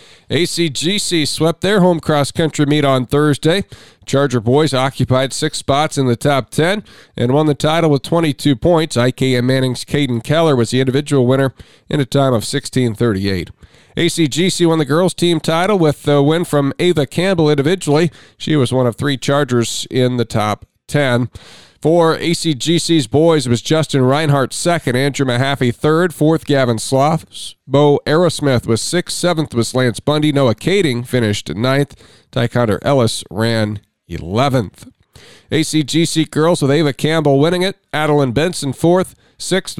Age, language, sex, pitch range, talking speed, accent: 40-59, English, male, 120-160 Hz, 150 wpm, American